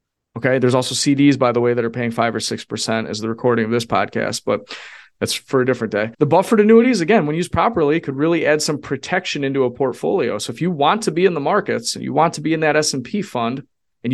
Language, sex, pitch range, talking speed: English, male, 120-155 Hz, 250 wpm